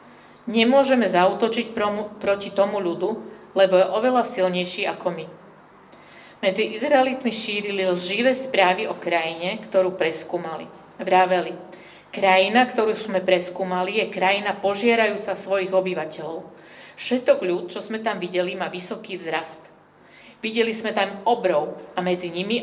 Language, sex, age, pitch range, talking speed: Slovak, female, 40-59, 180-220 Hz, 120 wpm